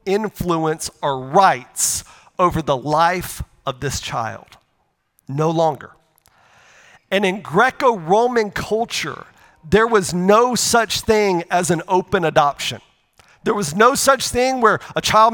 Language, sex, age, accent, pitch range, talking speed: English, male, 40-59, American, 180-225 Hz, 125 wpm